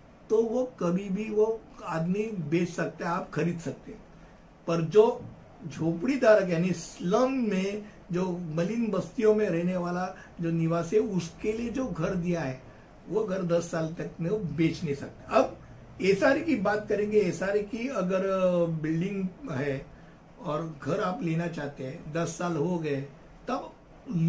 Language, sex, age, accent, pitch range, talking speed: Hindi, male, 60-79, native, 170-220 Hz, 165 wpm